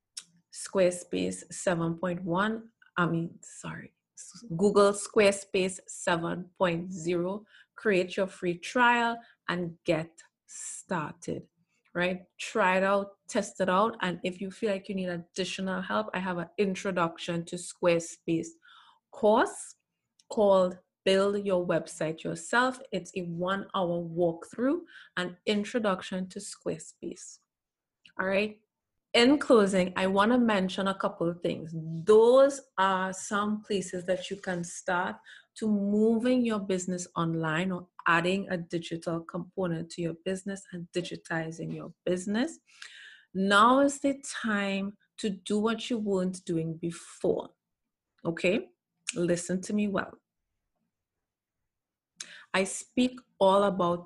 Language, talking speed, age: English, 120 wpm, 20-39